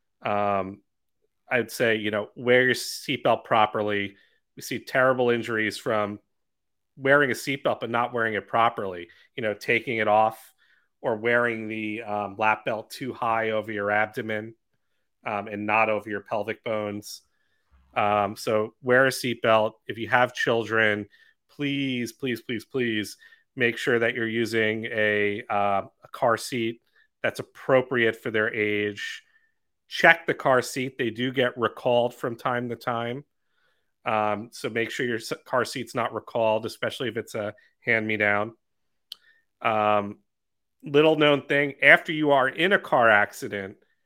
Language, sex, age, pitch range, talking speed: English, male, 30-49, 105-130 Hz, 150 wpm